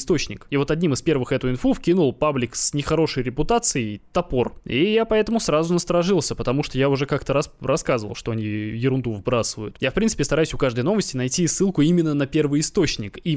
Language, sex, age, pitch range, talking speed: Russian, male, 20-39, 125-165 Hz, 195 wpm